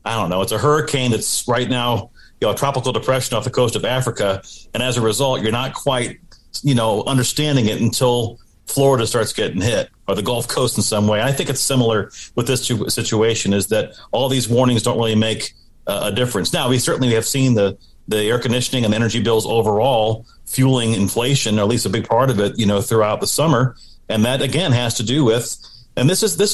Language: English